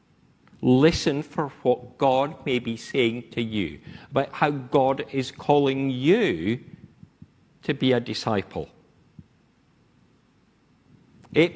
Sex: male